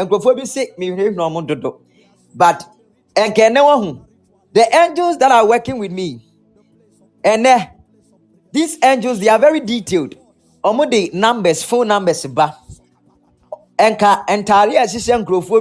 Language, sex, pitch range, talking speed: English, male, 185-250 Hz, 125 wpm